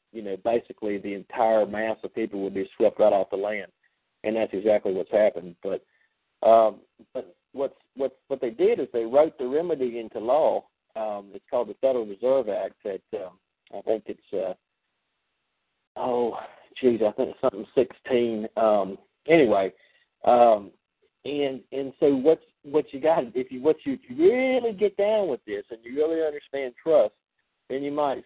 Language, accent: English, American